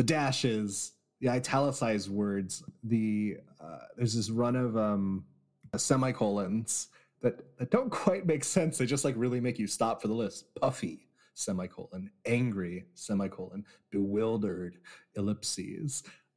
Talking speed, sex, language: 130 wpm, male, English